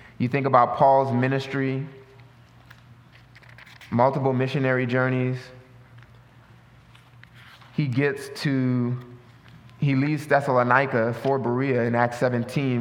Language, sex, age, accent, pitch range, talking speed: English, male, 20-39, American, 125-150 Hz, 90 wpm